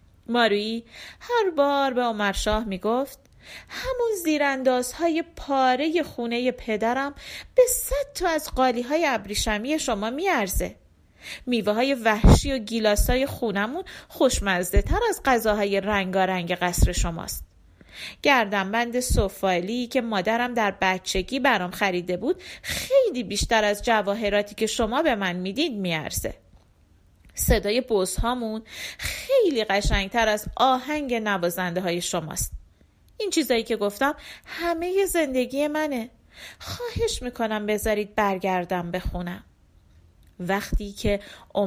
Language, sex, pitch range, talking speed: Persian, female, 195-275 Hz, 105 wpm